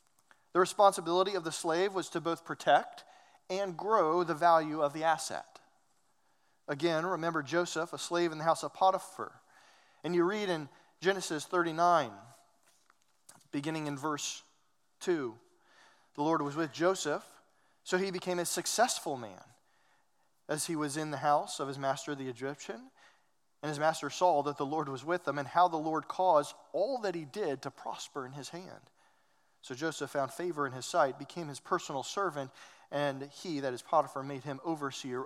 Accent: American